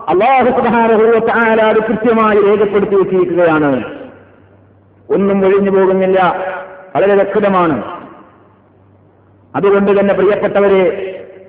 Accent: native